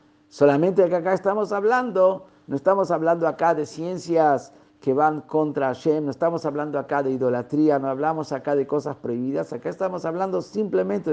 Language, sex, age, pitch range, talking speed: Spanish, male, 50-69, 150-190 Hz, 165 wpm